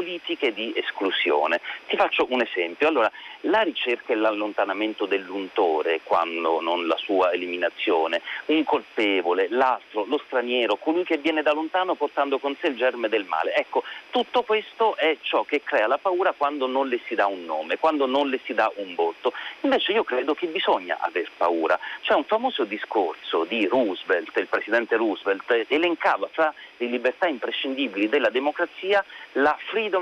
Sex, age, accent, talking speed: male, 40-59, native, 165 wpm